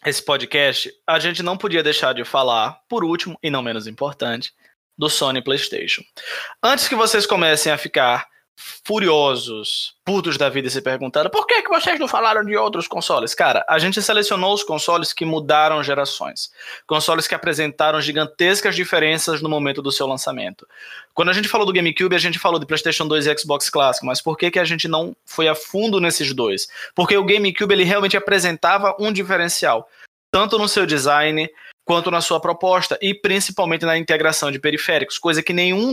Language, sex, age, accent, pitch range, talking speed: Portuguese, male, 20-39, Brazilian, 150-185 Hz, 185 wpm